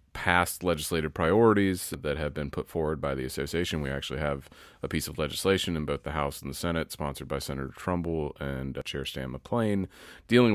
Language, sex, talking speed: English, male, 195 wpm